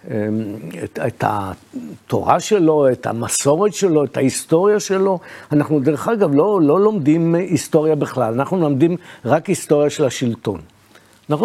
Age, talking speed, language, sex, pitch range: 60-79, 130 wpm, Hebrew, male, 135-180 Hz